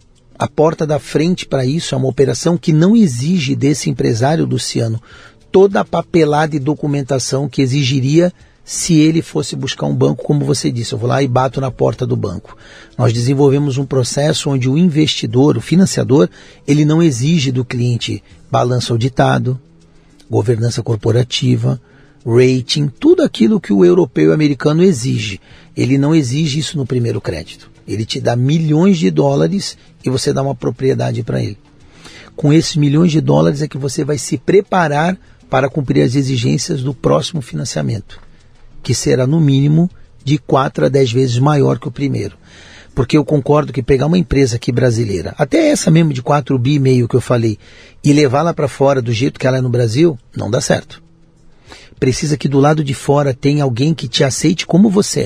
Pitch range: 125-155 Hz